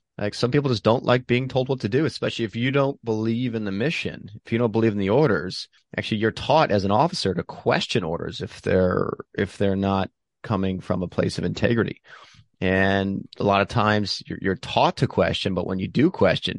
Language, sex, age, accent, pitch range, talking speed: English, male, 30-49, American, 95-115 Hz, 220 wpm